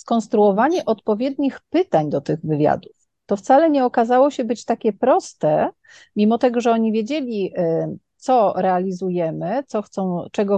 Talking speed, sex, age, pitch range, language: 125 wpm, female, 40-59, 185-250 Hz, Polish